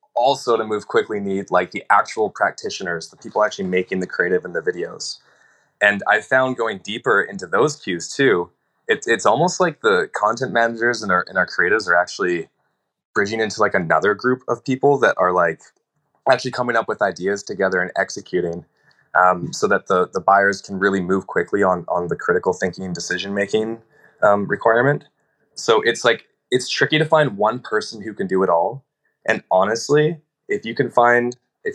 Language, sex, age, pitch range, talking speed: English, male, 20-39, 90-120 Hz, 185 wpm